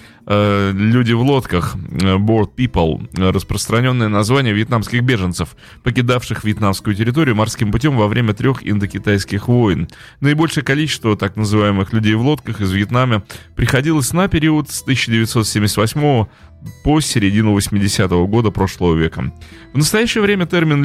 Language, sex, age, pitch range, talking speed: Russian, male, 20-39, 100-125 Hz, 125 wpm